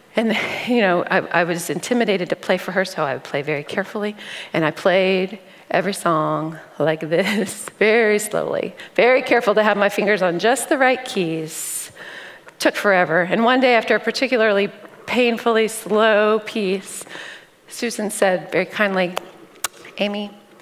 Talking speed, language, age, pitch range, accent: 155 wpm, English, 40-59, 195-265 Hz, American